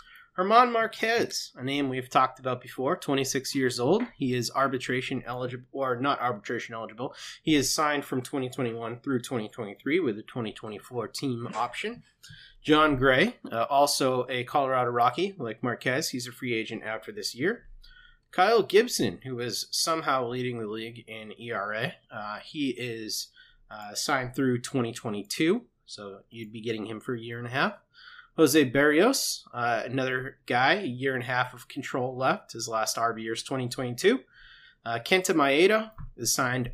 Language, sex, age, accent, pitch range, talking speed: English, male, 30-49, American, 120-150 Hz, 160 wpm